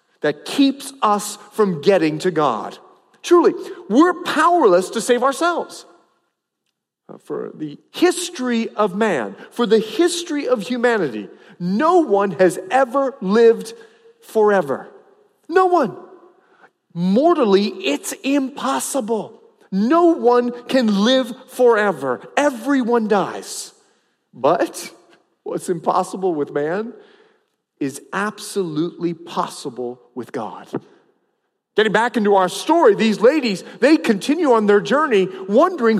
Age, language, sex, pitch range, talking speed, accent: 40-59, English, male, 205-330 Hz, 105 wpm, American